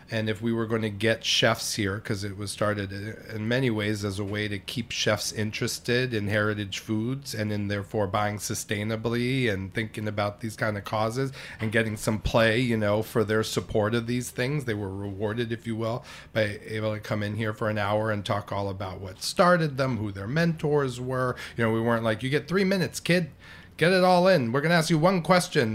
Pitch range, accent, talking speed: 105-130 Hz, American, 225 wpm